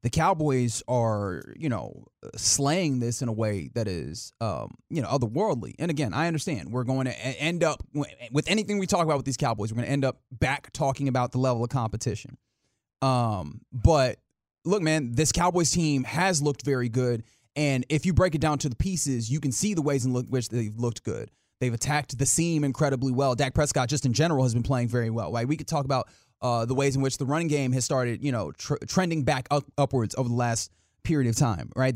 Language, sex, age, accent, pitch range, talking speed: English, male, 30-49, American, 120-145 Hz, 225 wpm